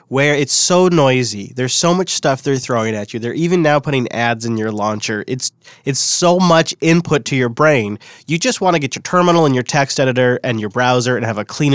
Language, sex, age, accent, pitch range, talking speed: English, male, 30-49, American, 125-155 Hz, 235 wpm